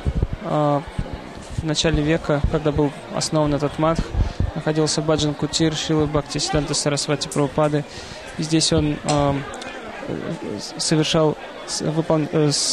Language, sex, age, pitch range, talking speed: Russian, male, 20-39, 145-160 Hz, 100 wpm